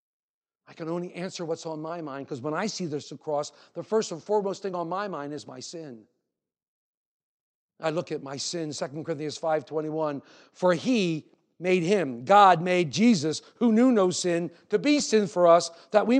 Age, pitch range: 50-69, 160-245 Hz